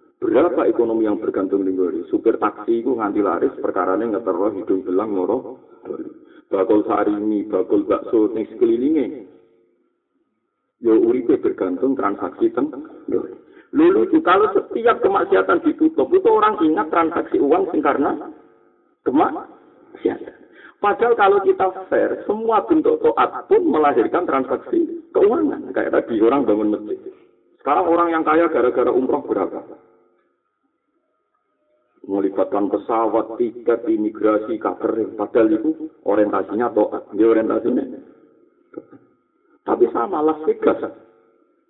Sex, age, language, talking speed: male, 50-69, Indonesian, 110 wpm